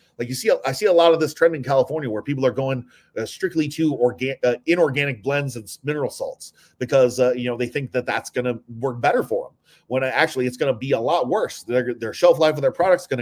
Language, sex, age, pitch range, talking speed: English, male, 30-49, 125-165 Hz, 260 wpm